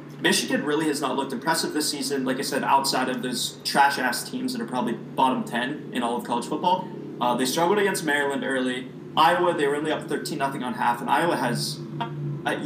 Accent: American